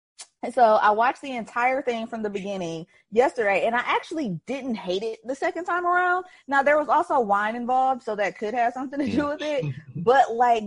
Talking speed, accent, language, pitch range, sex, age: 215 wpm, American, English, 165-240 Hz, female, 20-39